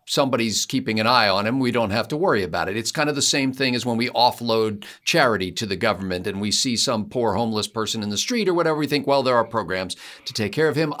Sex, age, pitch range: male, 50-69, 110-165 Hz